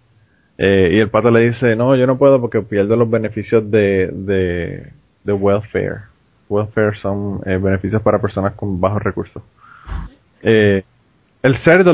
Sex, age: male, 20-39